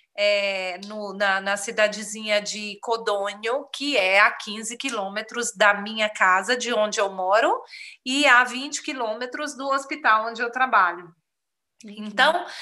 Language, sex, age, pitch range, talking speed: Portuguese, female, 30-49, 215-285 Hz, 130 wpm